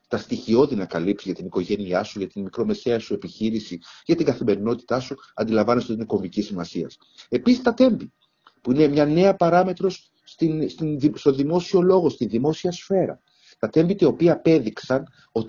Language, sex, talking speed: Greek, male, 160 wpm